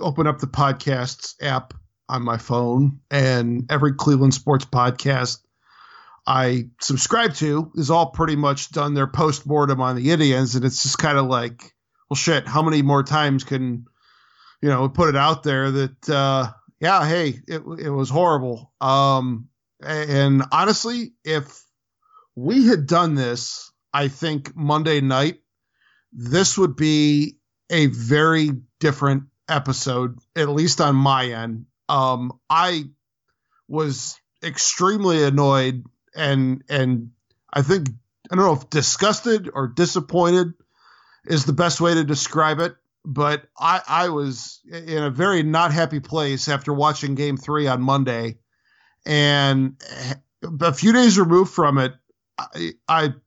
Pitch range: 130-160 Hz